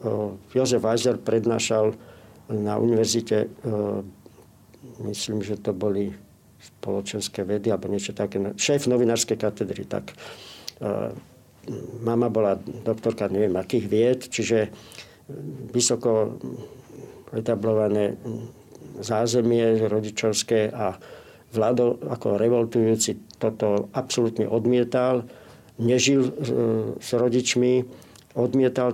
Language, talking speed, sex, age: Slovak, 85 wpm, male, 50-69